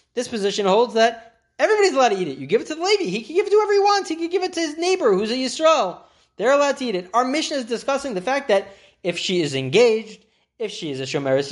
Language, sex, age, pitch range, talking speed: English, male, 30-49, 135-220 Hz, 280 wpm